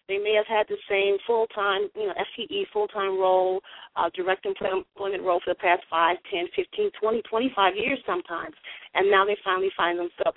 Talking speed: 185 wpm